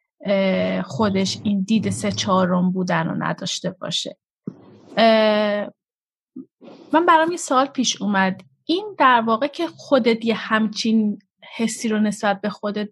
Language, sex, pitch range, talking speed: Persian, female, 195-255 Hz, 125 wpm